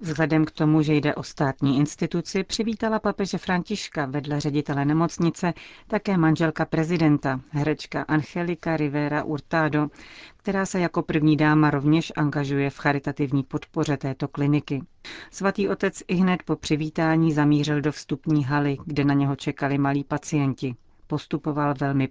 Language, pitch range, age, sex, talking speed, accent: Czech, 145-170 Hz, 40-59, female, 140 wpm, native